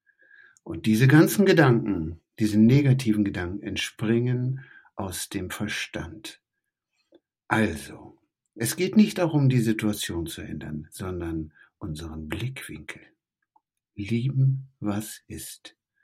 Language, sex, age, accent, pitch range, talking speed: German, male, 60-79, German, 105-165 Hz, 95 wpm